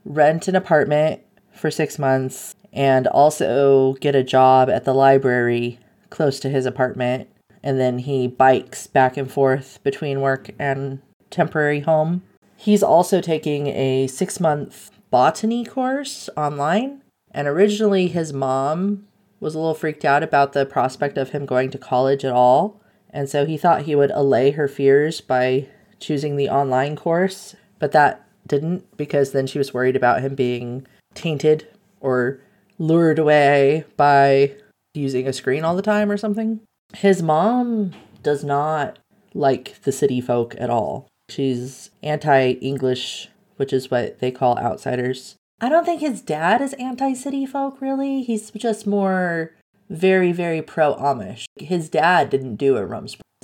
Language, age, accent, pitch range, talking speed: English, 30-49, American, 130-185 Hz, 155 wpm